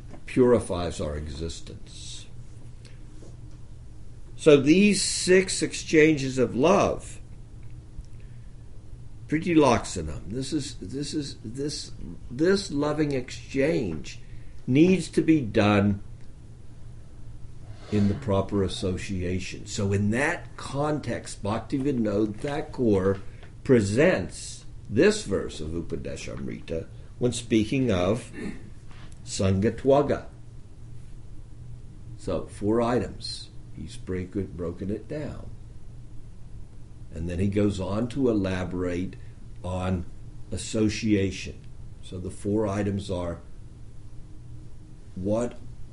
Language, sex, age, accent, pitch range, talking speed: English, male, 60-79, American, 100-120 Hz, 80 wpm